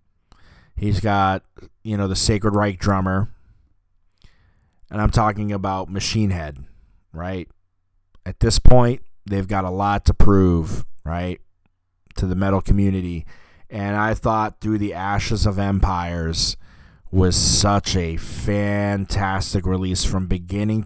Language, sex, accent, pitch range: English, male, American, 90-110 Hz